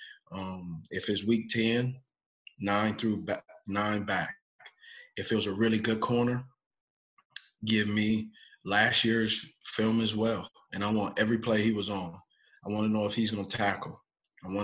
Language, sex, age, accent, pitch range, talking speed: English, male, 20-39, American, 100-115 Hz, 170 wpm